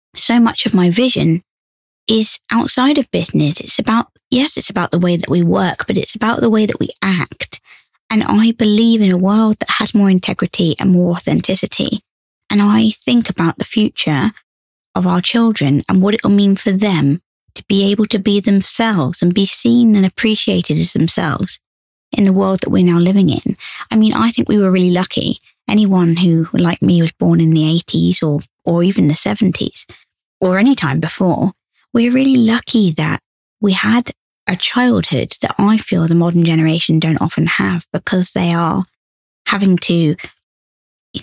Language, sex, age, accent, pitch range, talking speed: English, female, 20-39, British, 170-220 Hz, 185 wpm